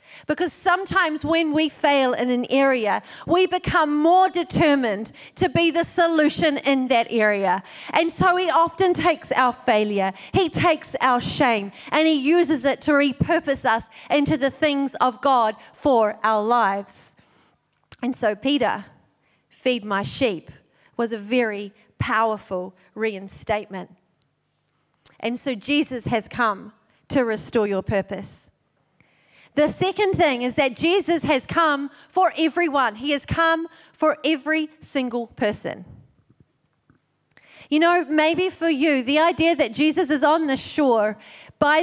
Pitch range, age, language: 230-325 Hz, 40-59, English